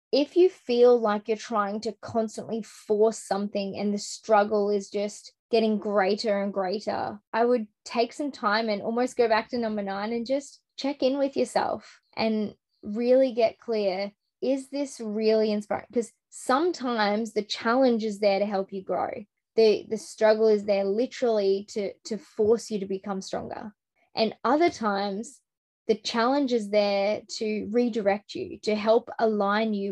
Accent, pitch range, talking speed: Australian, 205-240 Hz, 165 wpm